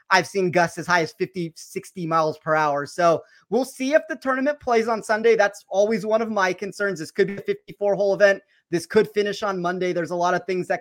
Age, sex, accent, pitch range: 30-49, male, American, 170-205 Hz